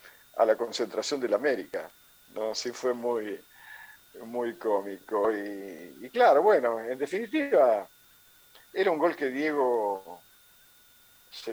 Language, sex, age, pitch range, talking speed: Spanish, male, 50-69, 110-150 Hz, 120 wpm